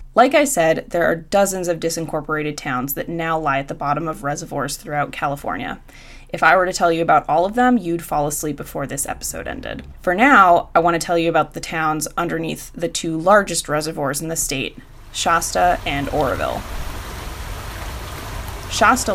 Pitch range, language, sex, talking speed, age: 155-195 Hz, English, female, 180 wpm, 20-39